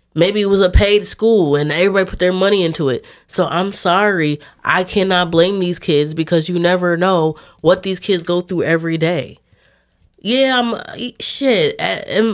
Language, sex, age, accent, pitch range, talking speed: English, female, 20-39, American, 165-245 Hz, 170 wpm